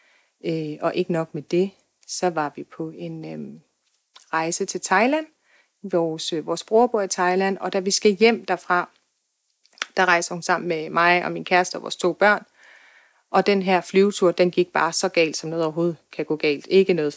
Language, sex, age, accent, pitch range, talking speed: Danish, female, 30-49, native, 165-200 Hz, 200 wpm